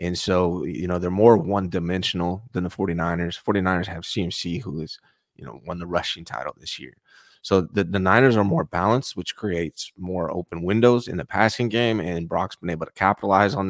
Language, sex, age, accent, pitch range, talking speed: English, male, 30-49, American, 90-105 Hz, 200 wpm